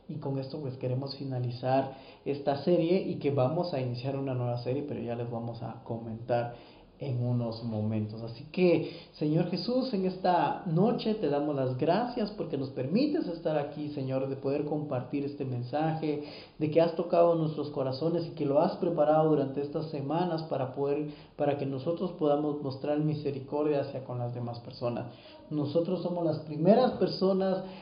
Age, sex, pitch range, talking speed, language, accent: 40-59, male, 130-160 Hz, 170 wpm, Spanish, Mexican